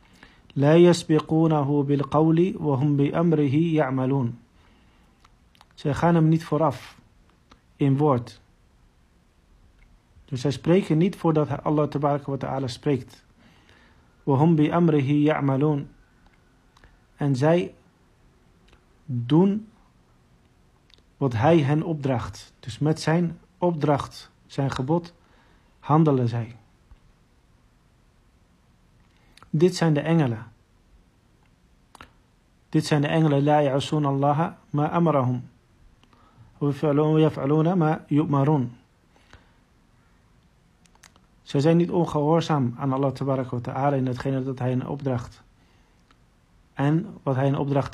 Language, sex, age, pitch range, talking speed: Dutch, male, 50-69, 125-155 Hz, 80 wpm